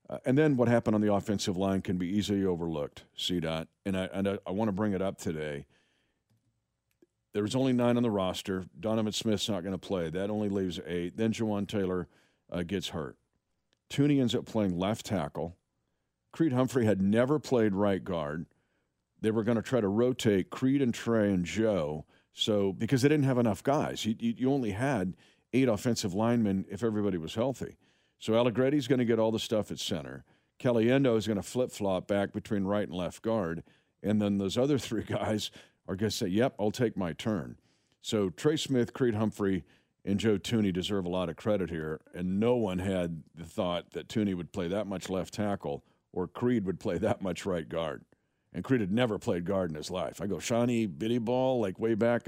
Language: English